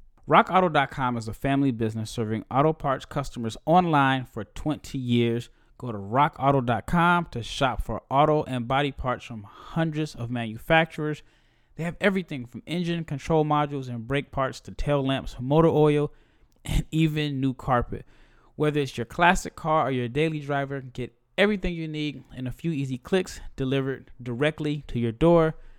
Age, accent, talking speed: 20-39, American, 160 wpm